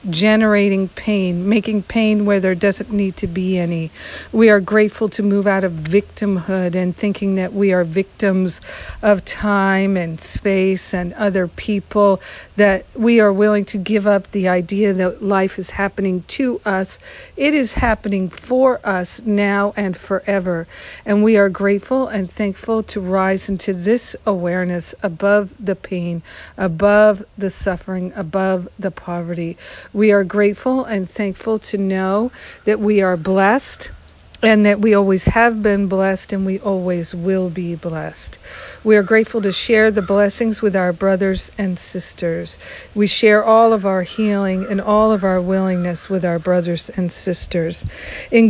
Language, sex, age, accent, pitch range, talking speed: English, female, 50-69, American, 180-210 Hz, 160 wpm